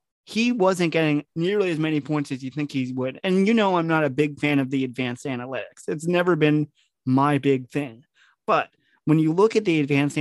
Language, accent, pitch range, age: English, American, 145-180 Hz, 30-49